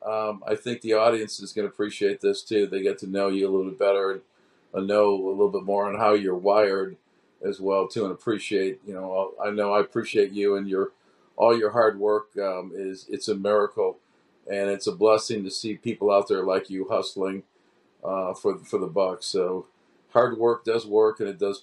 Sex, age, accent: male, 50-69, American